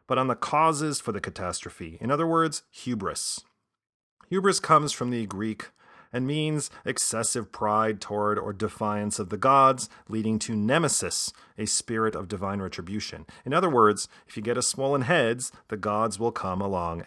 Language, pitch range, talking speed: English, 105-125 Hz, 170 wpm